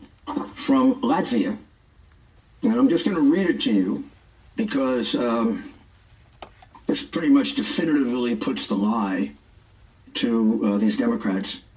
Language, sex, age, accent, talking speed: English, male, 60-79, American, 120 wpm